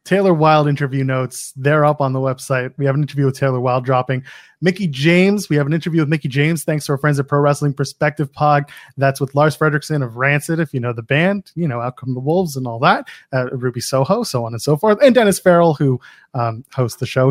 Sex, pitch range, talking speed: male, 140-185 Hz, 245 wpm